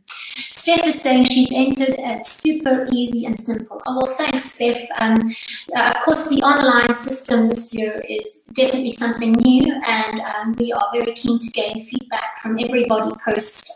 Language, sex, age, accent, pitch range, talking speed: English, female, 30-49, British, 225-265 Hz, 170 wpm